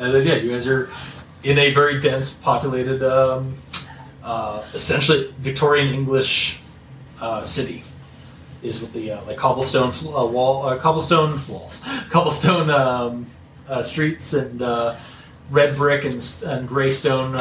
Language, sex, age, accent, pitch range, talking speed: English, male, 30-49, American, 125-145 Hz, 140 wpm